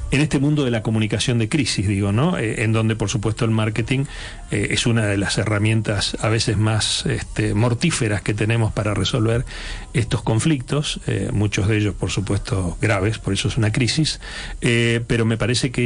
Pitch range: 105-120 Hz